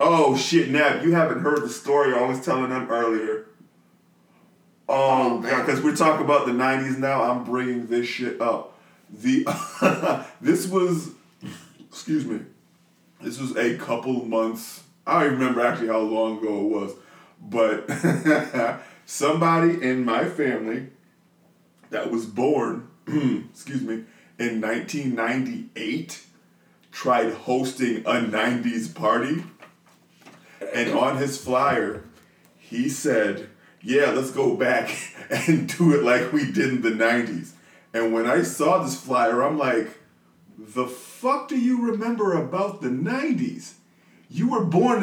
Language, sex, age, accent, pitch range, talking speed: English, male, 20-39, American, 120-165 Hz, 135 wpm